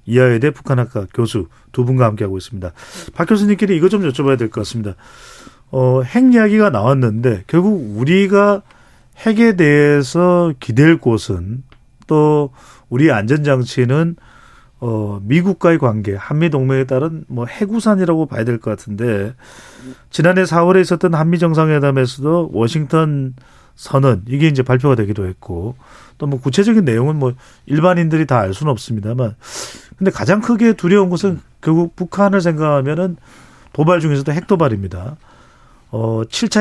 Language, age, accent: Korean, 40-59, native